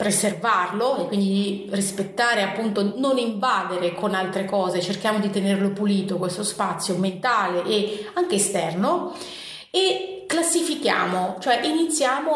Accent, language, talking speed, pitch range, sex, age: native, Italian, 115 wpm, 195-250 Hz, female, 30-49